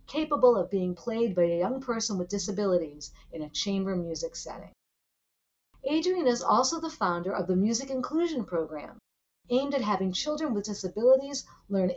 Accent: American